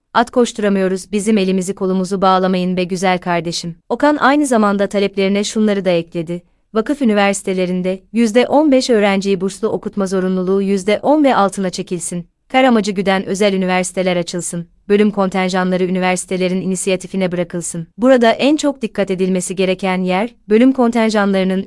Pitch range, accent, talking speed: 185-220 Hz, native, 130 wpm